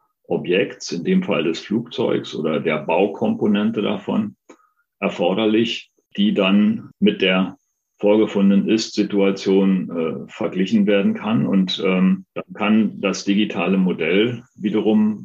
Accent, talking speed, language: German, 110 wpm, German